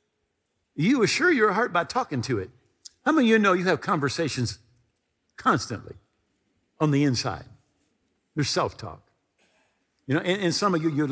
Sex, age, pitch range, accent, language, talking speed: male, 50-69, 130-200 Hz, American, English, 160 wpm